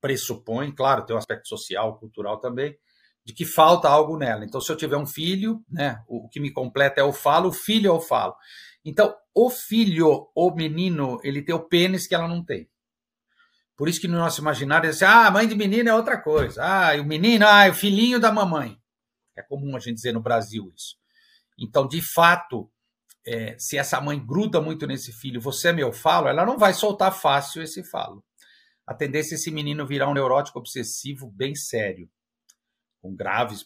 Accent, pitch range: Brazilian, 125-185 Hz